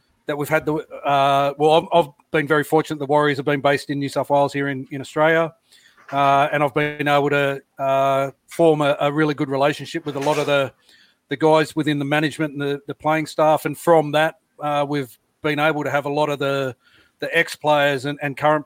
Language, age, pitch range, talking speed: English, 40-59, 140-155 Hz, 220 wpm